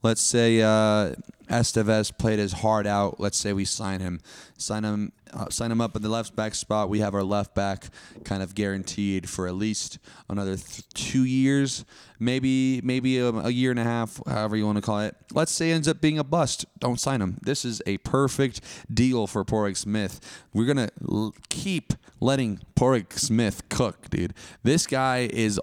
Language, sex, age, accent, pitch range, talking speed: English, male, 30-49, American, 105-130 Hz, 195 wpm